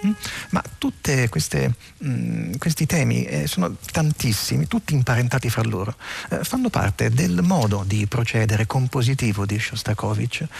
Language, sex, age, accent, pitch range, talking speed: Italian, male, 40-59, native, 110-145 Hz, 120 wpm